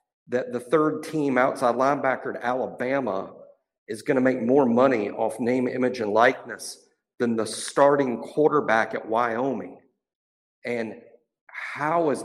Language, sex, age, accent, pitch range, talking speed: English, male, 50-69, American, 130-170 Hz, 135 wpm